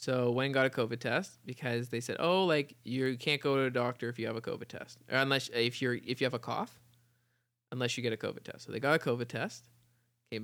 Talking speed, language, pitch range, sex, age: 260 wpm, English, 120-150 Hz, male, 20-39